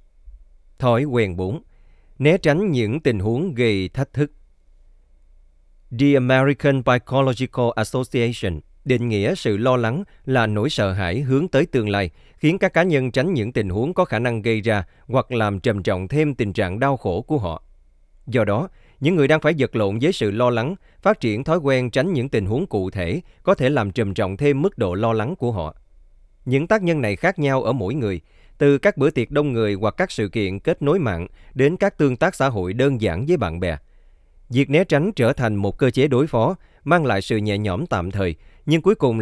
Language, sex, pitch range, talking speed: Vietnamese, male, 95-140 Hz, 215 wpm